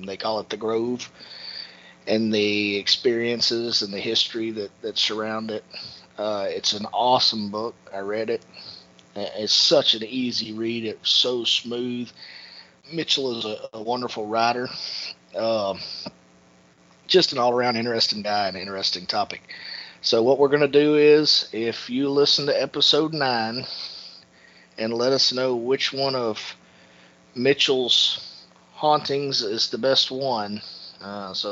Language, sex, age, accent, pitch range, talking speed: English, male, 30-49, American, 100-130 Hz, 140 wpm